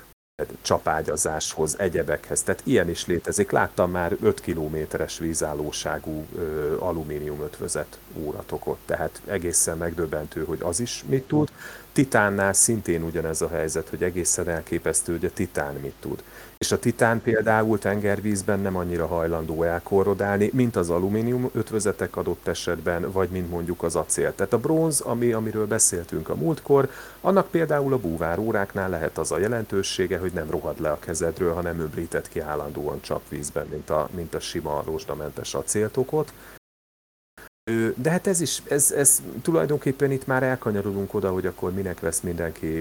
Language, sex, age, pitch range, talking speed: Hungarian, male, 30-49, 85-120 Hz, 145 wpm